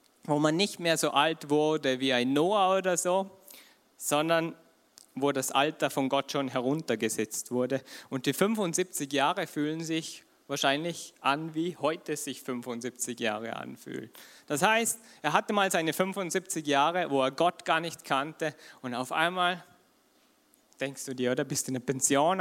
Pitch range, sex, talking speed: 130-170 Hz, male, 165 wpm